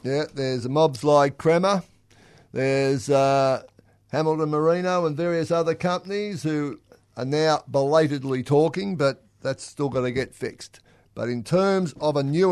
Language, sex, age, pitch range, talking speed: English, male, 50-69, 120-150 Hz, 150 wpm